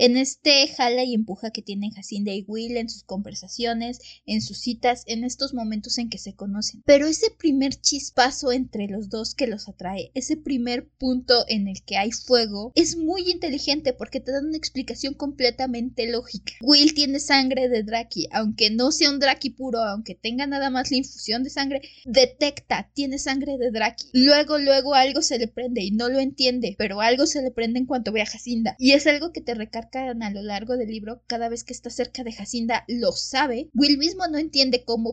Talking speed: 205 wpm